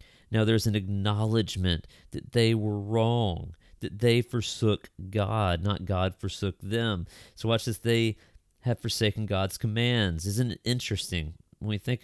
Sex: male